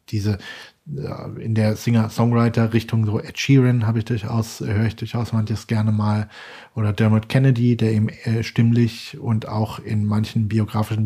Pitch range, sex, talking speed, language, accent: 110-125 Hz, male, 145 wpm, German, German